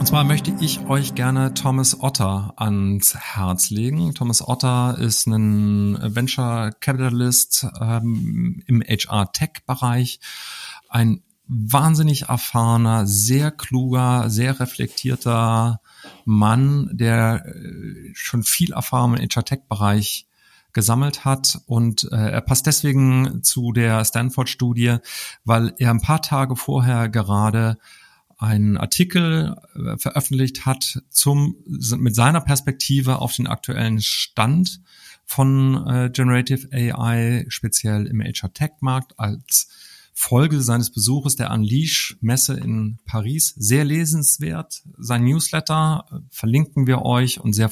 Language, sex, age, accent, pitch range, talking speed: German, male, 40-59, German, 110-135 Hz, 105 wpm